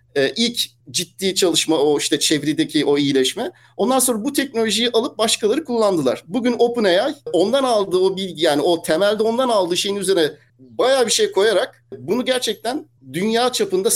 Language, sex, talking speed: Turkish, male, 155 wpm